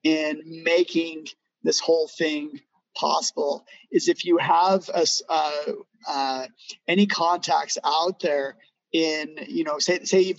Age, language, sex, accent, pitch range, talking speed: 30-49, English, male, American, 155-210 Hz, 135 wpm